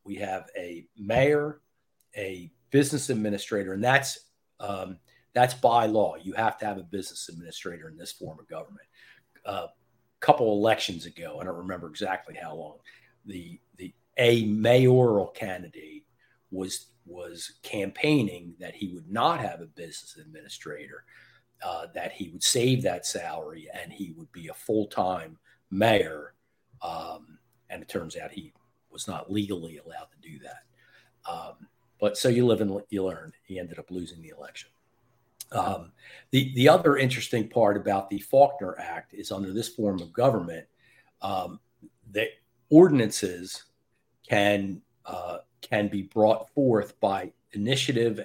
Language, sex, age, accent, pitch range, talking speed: English, male, 50-69, American, 100-125 Hz, 150 wpm